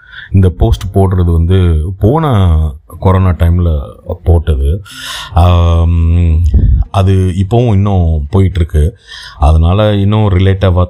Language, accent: Tamil, native